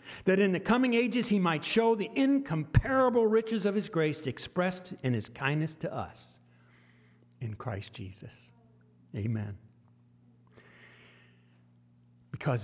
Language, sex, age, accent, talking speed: English, male, 60-79, American, 120 wpm